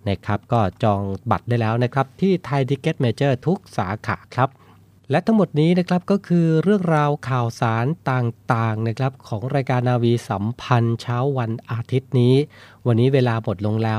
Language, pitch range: Thai, 110-130 Hz